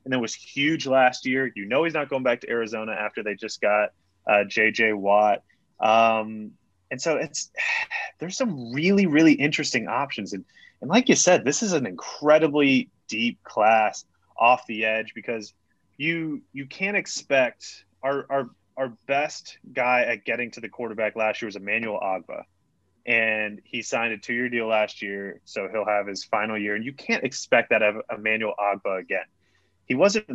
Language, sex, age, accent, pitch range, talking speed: English, male, 20-39, American, 110-140 Hz, 180 wpm